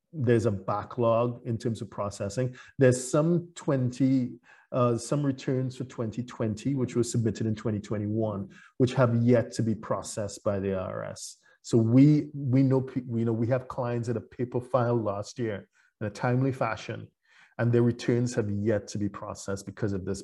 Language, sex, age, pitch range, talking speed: English, male, 40-59, 105-125 Hz, 175 wpm